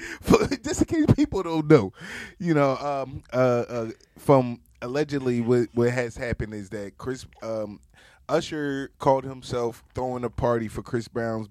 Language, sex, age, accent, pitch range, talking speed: English, male, 20-39, American, 110-130 Hz, 155 wpm